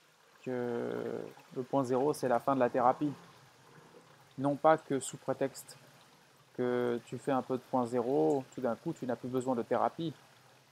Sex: male